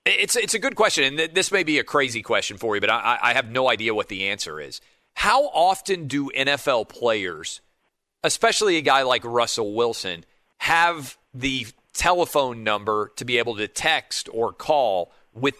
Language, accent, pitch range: English, American, 120-160 Hz